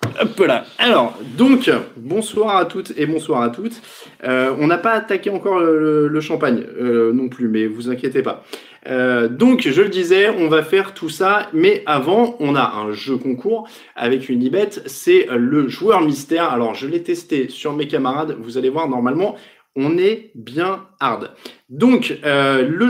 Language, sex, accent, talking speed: French, male, French, 185 wpm